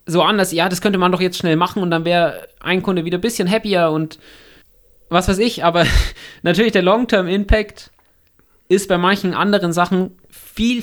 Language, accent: German, German